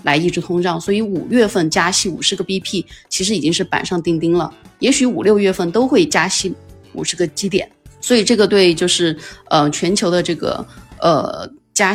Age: 20-39